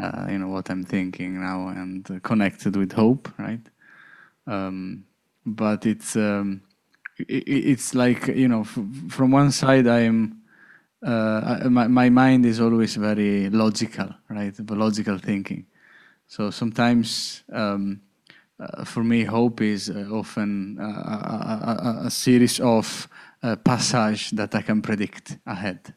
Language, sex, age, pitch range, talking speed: English, male, 20-39, 105-120 Hz, 145 wpm